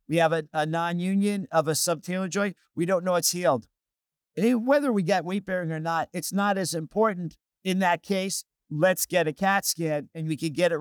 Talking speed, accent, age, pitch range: 205 wpm, American, 50-69, 155-185 Hz